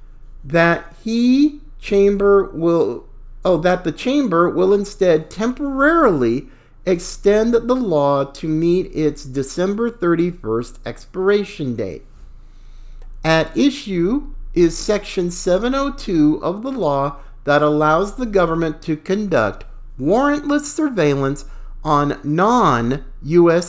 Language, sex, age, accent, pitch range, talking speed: English, male, 50-69, American, 130-205 Hz, 100 wpm